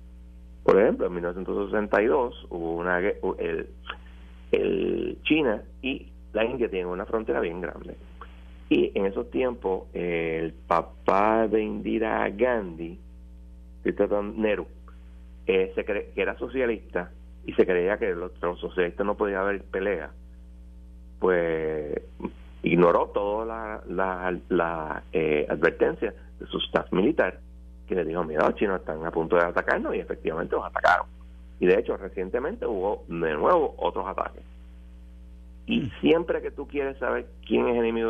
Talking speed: 145 wpm